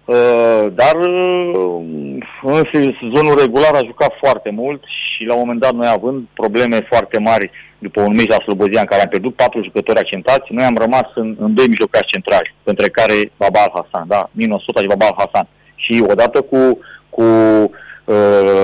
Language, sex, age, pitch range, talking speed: Romanian, male, 30-49, 110-135 Hz, 165 wpm